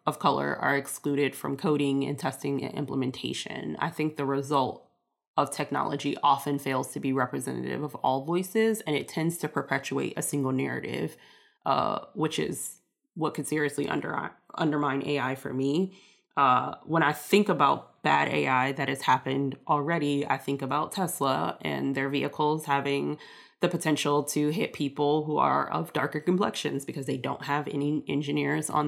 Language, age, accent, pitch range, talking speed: English, 20-39, American, 140-155 Hz, 160 wpm